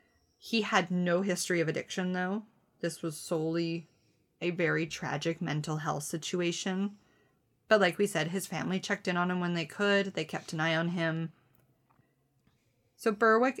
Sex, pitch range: female, 160-195 Hz